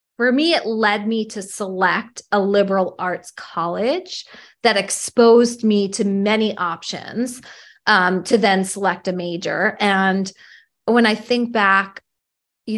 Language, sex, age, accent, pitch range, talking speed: English, female, 20-39, American, 185-230 Hz, 135 wpm